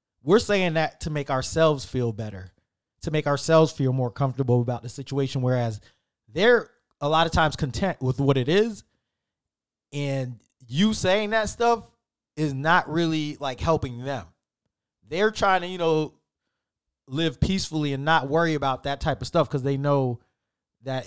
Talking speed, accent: 165 wpm, American